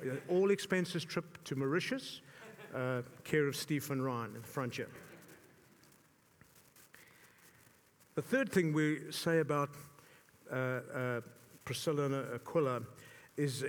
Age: 50-69